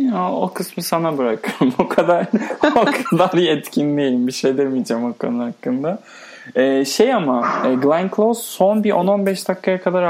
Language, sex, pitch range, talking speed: Turkish, male, 145-220 Hz, 135 wpm